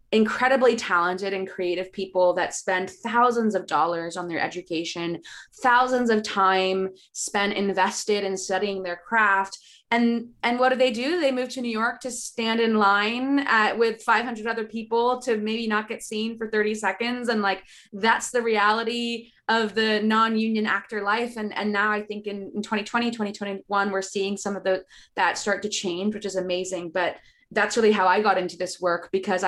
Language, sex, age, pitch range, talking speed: English, female, 20-39, 190-230 Hz, 185 wpm